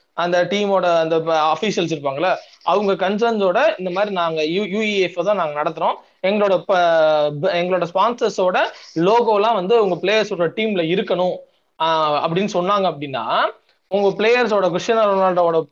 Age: 20-39